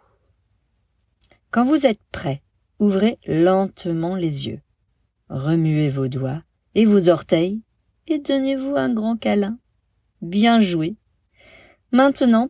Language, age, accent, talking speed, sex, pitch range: English, 50-69, French, 105 wpm, female, 135-215 Hz